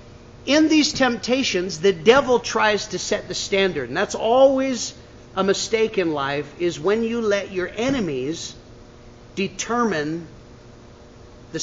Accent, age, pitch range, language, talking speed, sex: American, 50-69, 125-190 Hz, English, 130 wpm, male